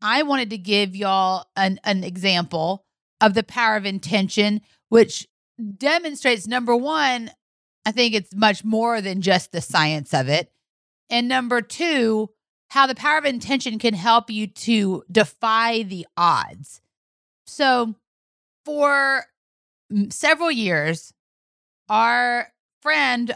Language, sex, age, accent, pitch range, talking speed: English, female, 30-49, American, 195-235 Hz, 125 wpm